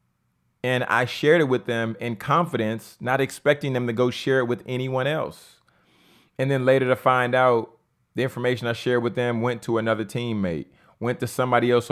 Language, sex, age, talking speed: English, male, 30-49, 190 wpm